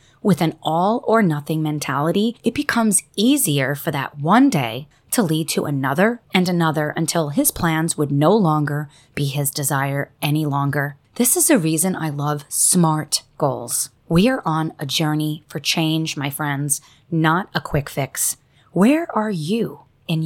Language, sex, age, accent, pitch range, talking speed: English, female, 30-49, American, 145-195 Hz, 165 wpm